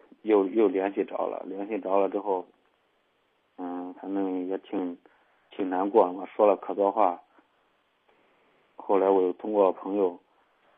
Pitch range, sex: 90-100 Hz, male